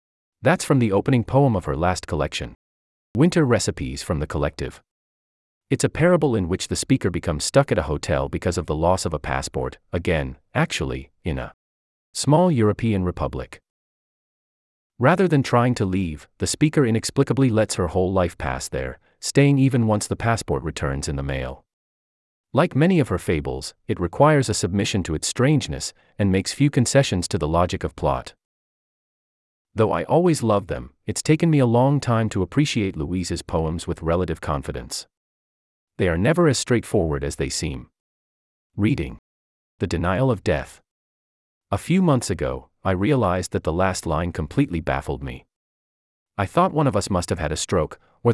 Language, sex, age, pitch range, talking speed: English, male, 30-49, 75-120 Hz, 175 wpm